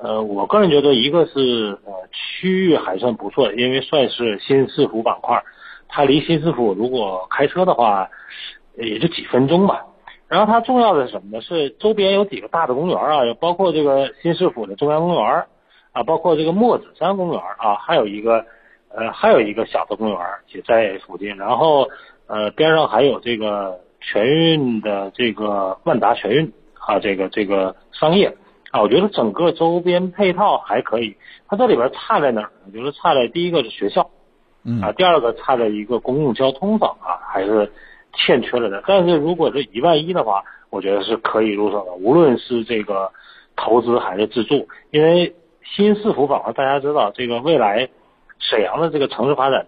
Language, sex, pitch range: Chinese, male, 110-170 Hz